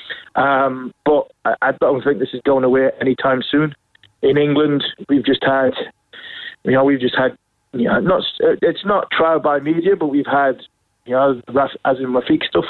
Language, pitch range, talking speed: English, 130-150 Hz, 185 wpm